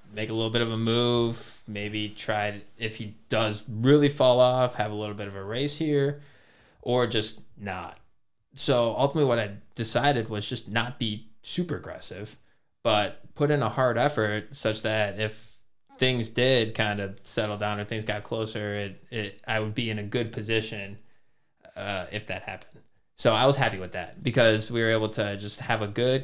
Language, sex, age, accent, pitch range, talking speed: English, male, 20-39, American, 105-120 Hz, 195 wpm